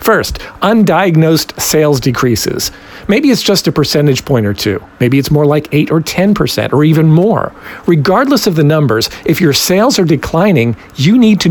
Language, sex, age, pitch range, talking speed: English, male, 50-69, 140-190 Hz, 175 wpm